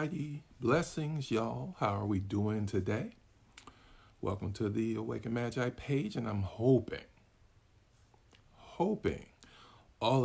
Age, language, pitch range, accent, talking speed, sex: 50-69, English, 105-130 Hz, American, 105 wpm, male